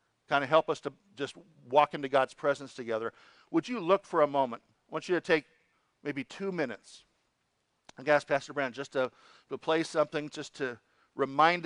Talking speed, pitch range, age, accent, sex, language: 190 wpm, 130-165 Hz, 50-69, American, male, English